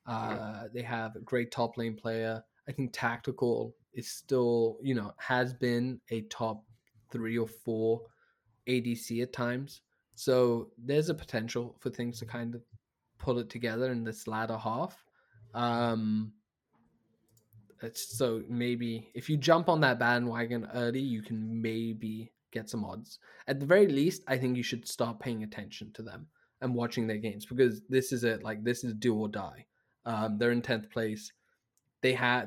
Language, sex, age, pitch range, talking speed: English, male, 20-39, 110-125 Hz, 170 wpm